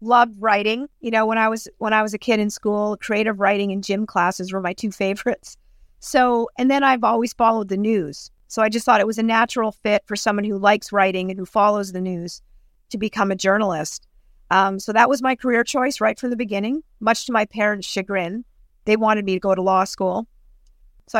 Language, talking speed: English, 225 wpm